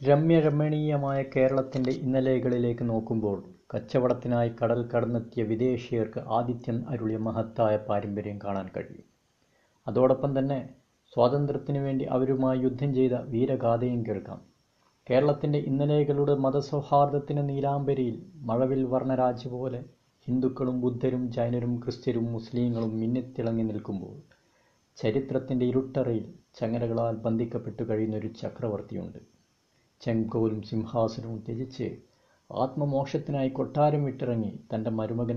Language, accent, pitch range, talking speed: Malayalam, native, 115-130 Hz, 85 wpm